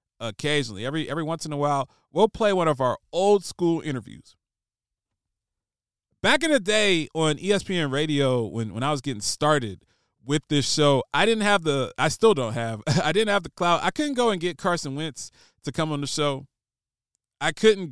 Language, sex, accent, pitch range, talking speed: English, male, American, 125-180 Hz, 195 wpm